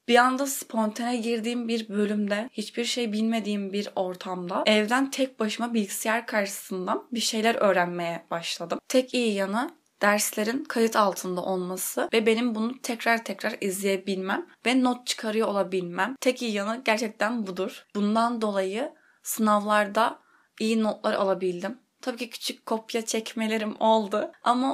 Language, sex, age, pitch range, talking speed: Turkish, female, 20-39, 205-245 Hz, 135 wpm